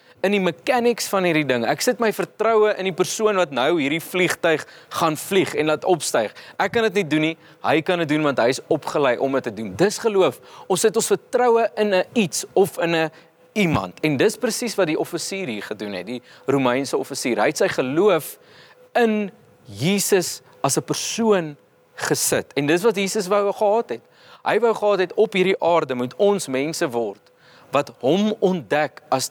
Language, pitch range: English, 150-225 Hz